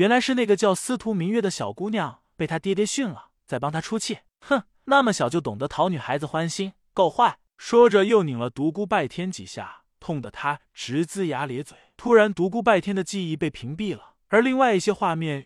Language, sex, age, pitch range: Chinese, male, 20-39, 155-205 Hz